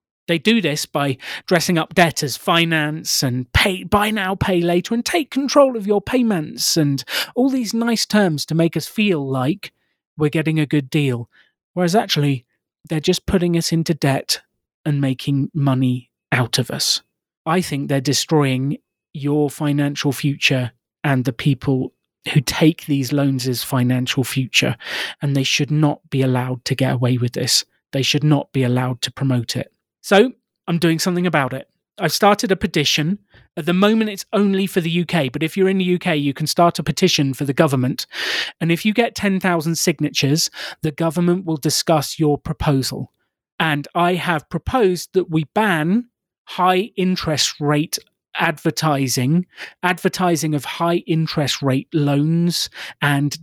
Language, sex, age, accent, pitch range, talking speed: English, male, 30-49, British, 140-180 Hz, 165 wpm